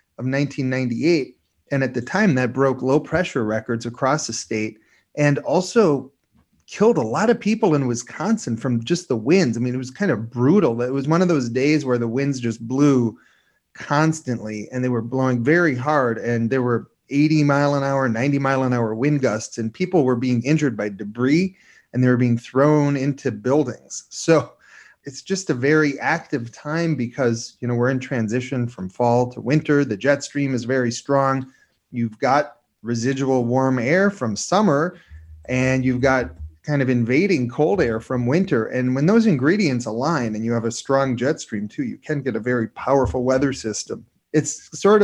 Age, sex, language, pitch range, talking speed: 30-49, male, English, 120-145 Hz, 190 wpm